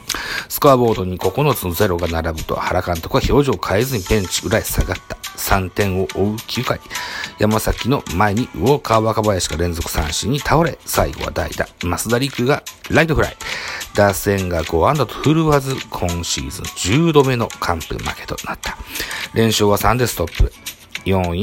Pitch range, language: 90-110 Hz, Japanese